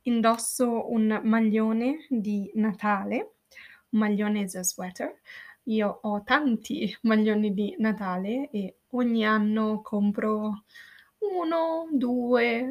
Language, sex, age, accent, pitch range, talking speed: Italian, female, 20-39, native, 205-245 Hz, 95 wpm